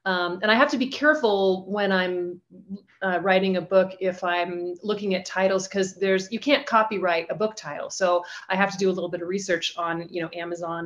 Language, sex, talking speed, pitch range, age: English, female, 215 wpm, 170-200 Hz, 30-49